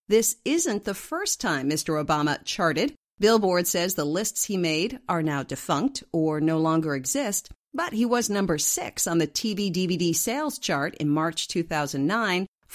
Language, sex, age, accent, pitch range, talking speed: English, female, 50-69, American, 160-230 Hz, 165 wpm